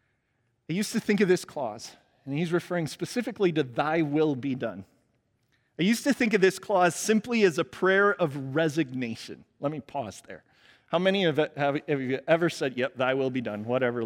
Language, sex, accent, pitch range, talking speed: English, male, American, 120-175 Hz, 205 wpm